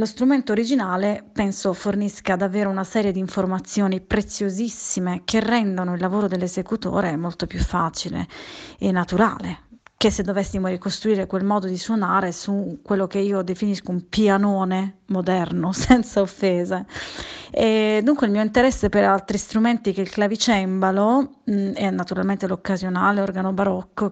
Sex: female